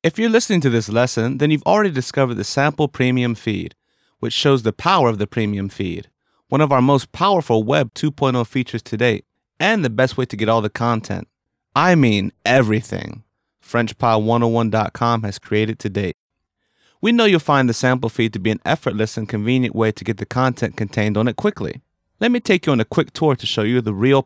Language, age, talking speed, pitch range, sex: English, 30-49, 210 wpm, 110-135 Hz, male